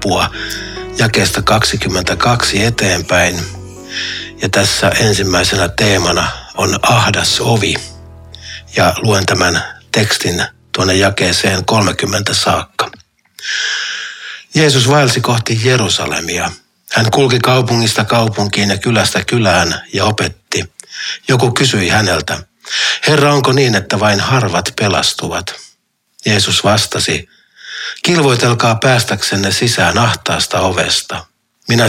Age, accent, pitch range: 60-79, native, 95-120 Hz